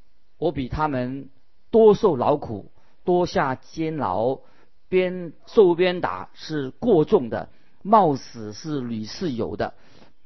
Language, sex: Chinese, male